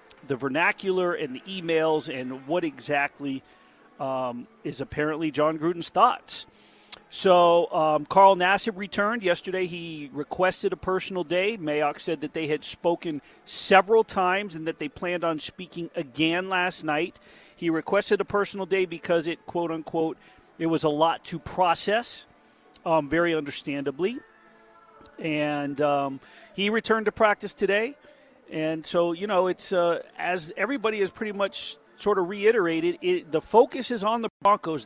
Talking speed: 150 wpm